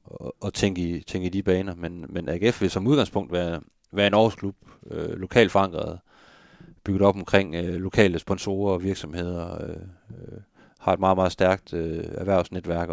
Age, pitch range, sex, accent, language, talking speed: 30-49, 85-100 Hz, male, native, Danish, 165 wpm